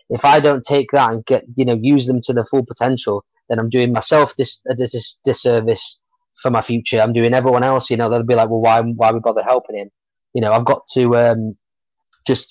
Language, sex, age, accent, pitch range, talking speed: English, male, 20-39, British, 115-135 Hz, 230 wpm